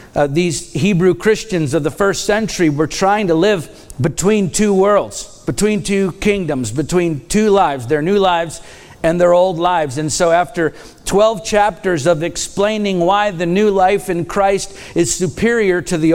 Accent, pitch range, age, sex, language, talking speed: American, 155-190 Hz, 50-69, male, English, 165 wpm